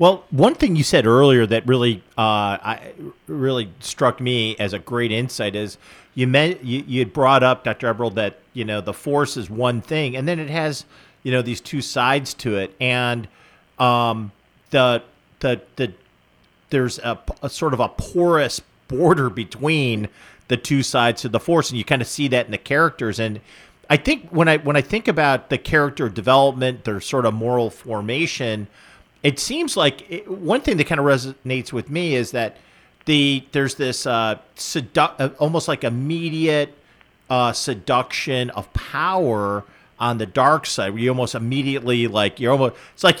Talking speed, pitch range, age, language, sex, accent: 180 wpm, 115-145 Hz, 40-59, English, male, American